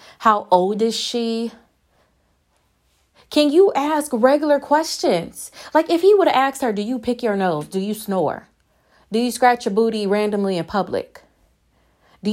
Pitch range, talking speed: 220-300 Hz, 160 wpm